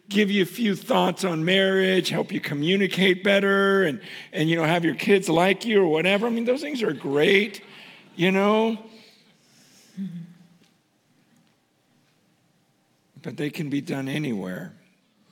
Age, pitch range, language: 50-69, 140-215 Hz, English